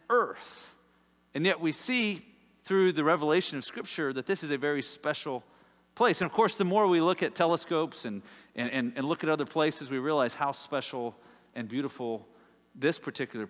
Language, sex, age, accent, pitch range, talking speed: English, male, 40-59, American, 125-205 Hz, 185 wpm